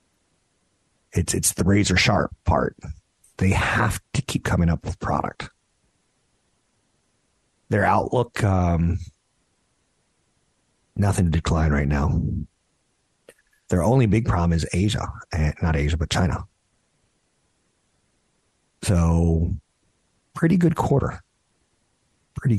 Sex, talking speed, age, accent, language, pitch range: male, 100 wpm, 50-69, American, English, 85-110 Hz